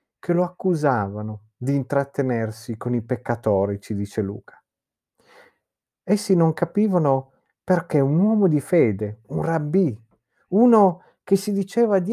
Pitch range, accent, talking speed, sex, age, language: 130-195 Hz, native, 130 wpm, male, 40-59, Italian